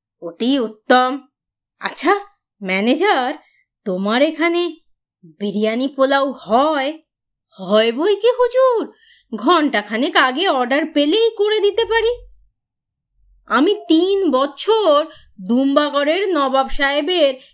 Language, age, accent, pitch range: Bengali, 30-49, native, 225-335 Hz